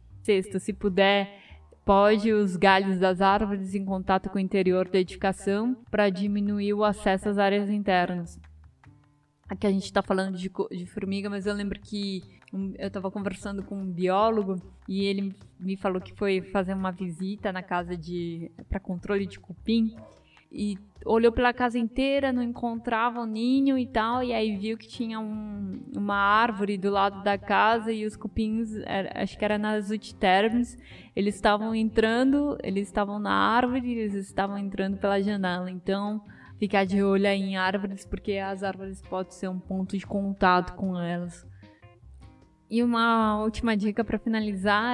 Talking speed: 165 wpm